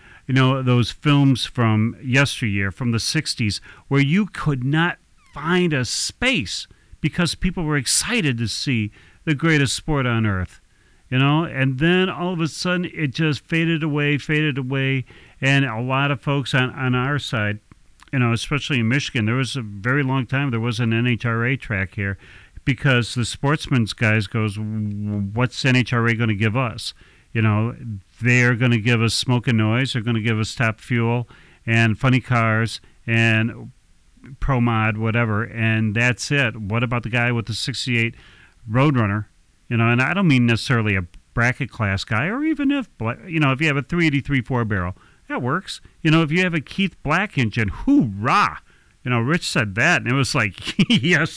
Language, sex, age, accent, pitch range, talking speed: English, male, 40-59, American, 115-155 Hz, 185 wpm